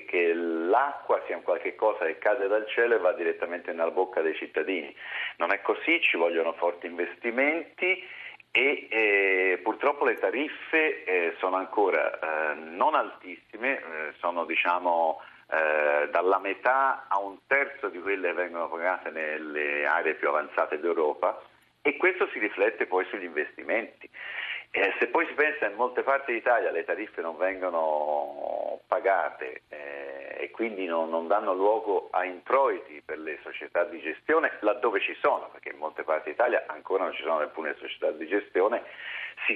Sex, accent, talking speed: male, native, 160 wpm